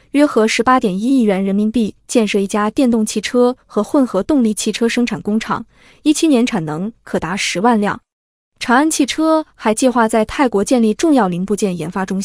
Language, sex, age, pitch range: Chinese, female, 20-39, 205-260 Hz